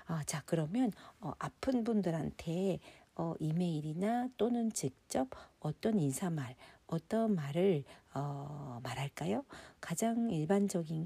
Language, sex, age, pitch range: Korean, female, 50-69, 160-210 Hz